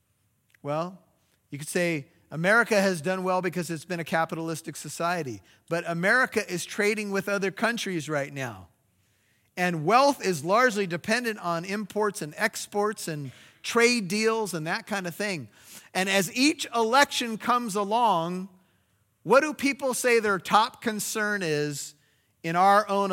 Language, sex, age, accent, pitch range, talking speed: English, male, 40-59, American, 130-200 Hz, 150 wpm